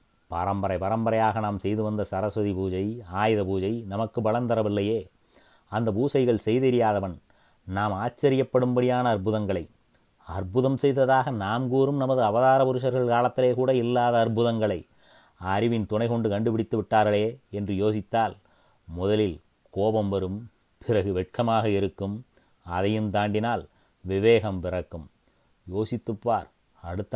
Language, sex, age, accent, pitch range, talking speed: Tamil, male, 30-49, native, 100-115 Hz, 100 wpm